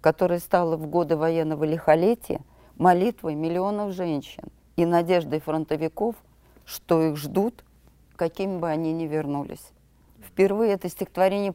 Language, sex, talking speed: Russian, female, 120 wpm